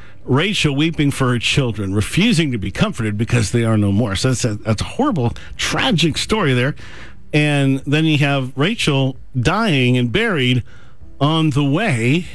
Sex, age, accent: male, 50-69, American